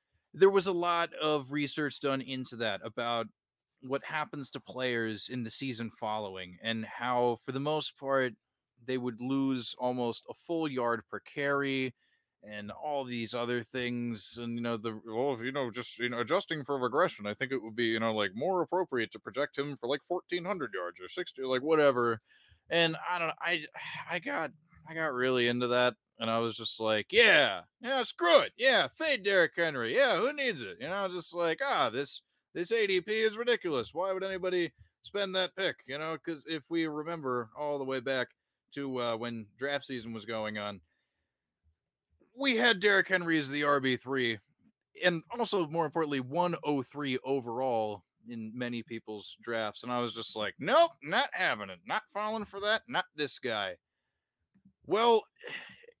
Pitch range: 115-175 Hz